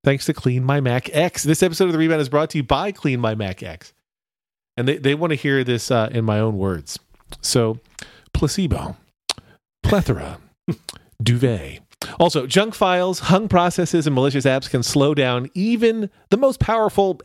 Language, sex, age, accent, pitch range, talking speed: English, male, 40-59, American, 115-155 Hz, 175 wpm